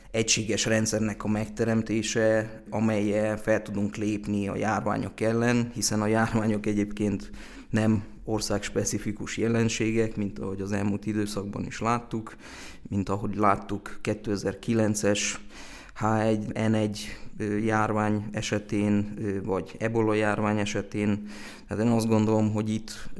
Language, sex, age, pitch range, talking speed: Hungarian, male, 20-39, 105-110 Hz, 110 wpm